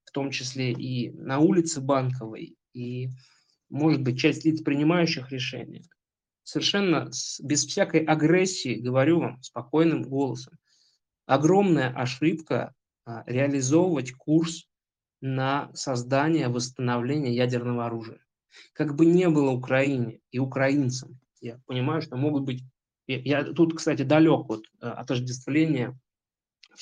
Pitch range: 120-150 Hz